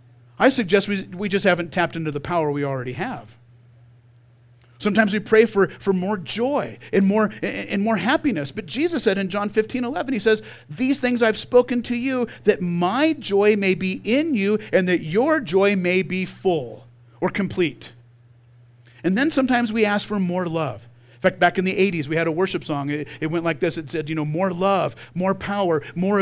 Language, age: English, 40-59